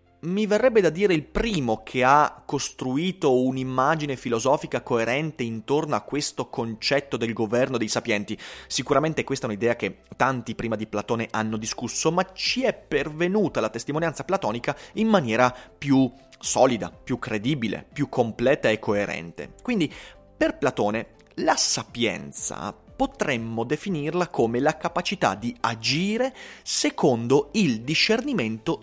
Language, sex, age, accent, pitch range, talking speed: Italian, male, 30-49, native, 115-160 Hz, 130 wpm